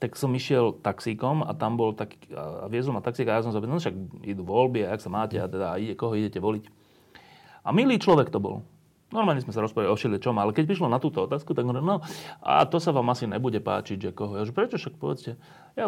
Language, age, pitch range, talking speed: Slovak, 30-49, 105-155 Hz, 250 wpm